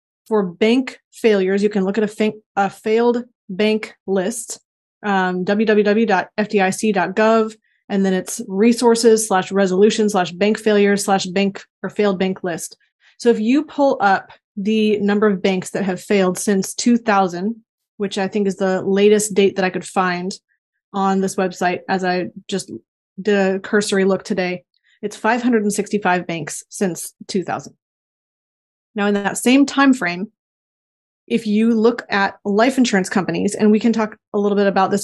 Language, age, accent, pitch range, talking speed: English, 30-49, American, 190-220 Hz, 160 wpm